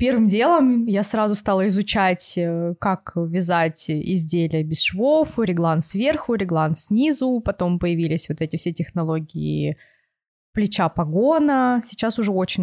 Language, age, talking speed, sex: Russian, 20-39, 120 wpm, female